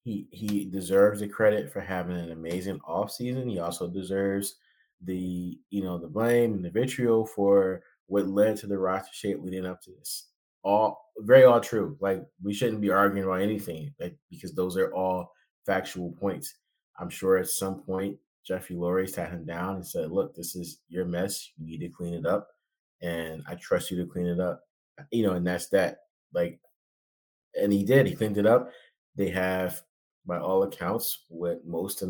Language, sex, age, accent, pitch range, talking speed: English, male, 20-39, American, 90-100 Hz, 190 wpm